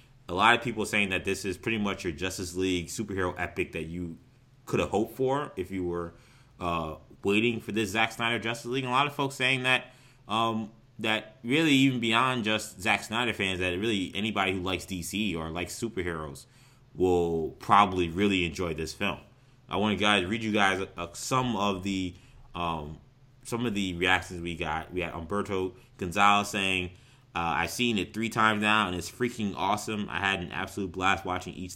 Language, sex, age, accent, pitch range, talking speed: English, male, 20-39, American, 90-115 Hz, 195 wpm